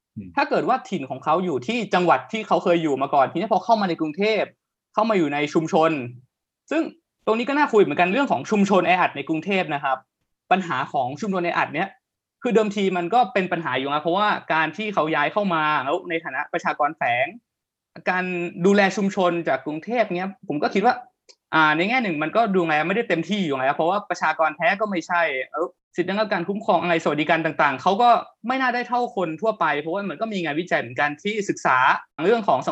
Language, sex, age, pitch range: Thai, male, 20-39, 160-215 Hz